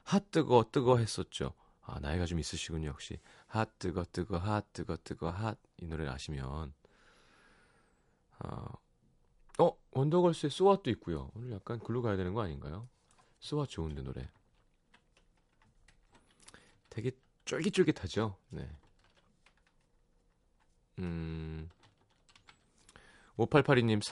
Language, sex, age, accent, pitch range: Korean, male, 30-49, native, 85-120 Hz